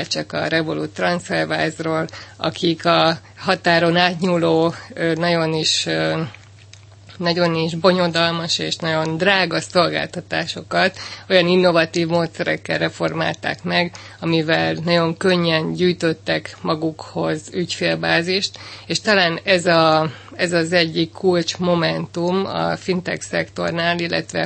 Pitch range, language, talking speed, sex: 155-180 Hz, Hungarian, 100 wpm, female